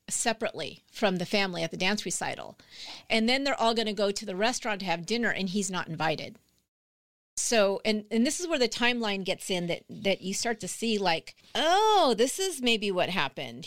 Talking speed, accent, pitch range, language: 210 wpm, American, 175-220 Hz, English